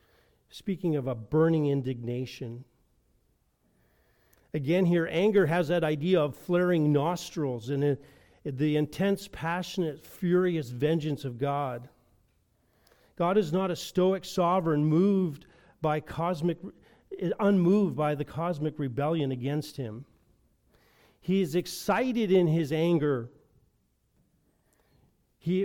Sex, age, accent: male, 40-59, American